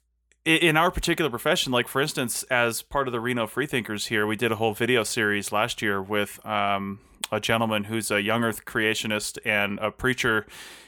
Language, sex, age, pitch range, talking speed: English, male, 30-49, 105-130 Hz, 190 wpm